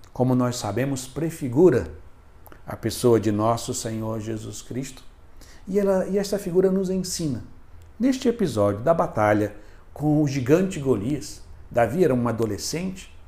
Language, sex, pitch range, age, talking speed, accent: Portuguese, male, 85-130 Hz, 60-79, 130 wpm, Brazilian